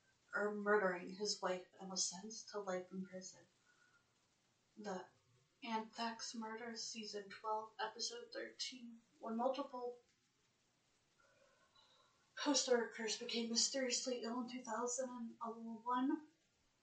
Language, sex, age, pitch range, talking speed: English, female, 30-49, 195-235 Hz, 95 wpm